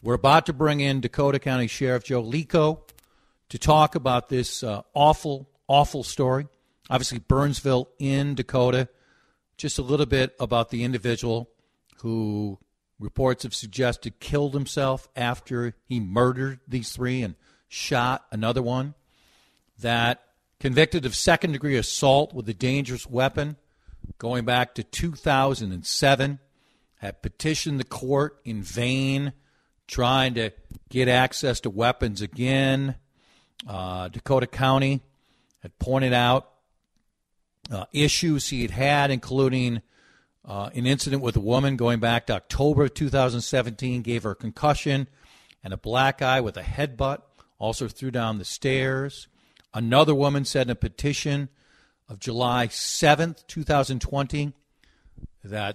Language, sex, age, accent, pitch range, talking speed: English, male, 50-69, American, 120-140 Hz, 130 wpm